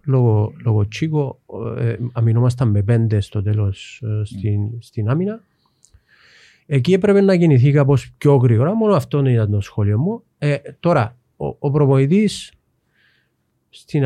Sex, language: male, Greek